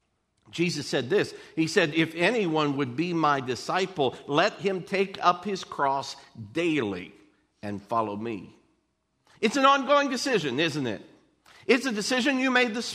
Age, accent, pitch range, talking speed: 50-69, American, 160-255 Hz, 155 wpm